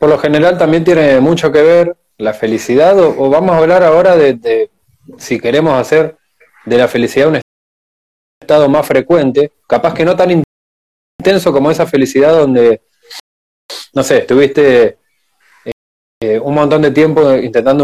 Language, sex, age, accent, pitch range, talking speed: Spanish, male, 20-39, Argentinian, 130-195 Hz, 155 wpm